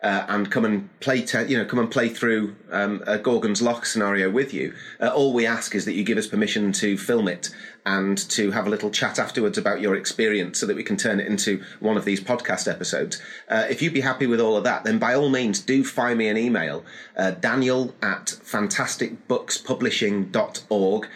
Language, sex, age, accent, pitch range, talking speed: English, male, 30-49, British, 100-130 Hz, 220 wpm